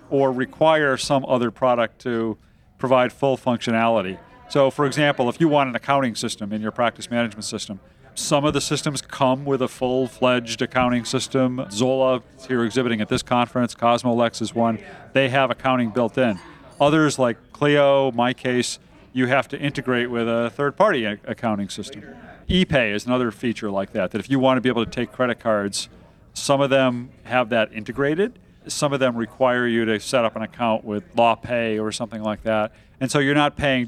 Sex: male